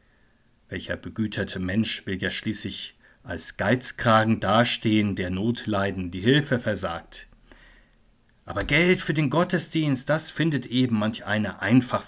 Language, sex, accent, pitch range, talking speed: German, male, German, 105-130 Hz, 125 wpm